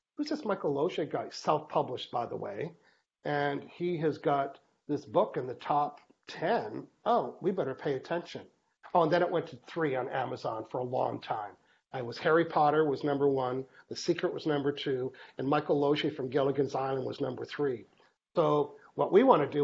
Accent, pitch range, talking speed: American, 145-175 Hz, 195 wpm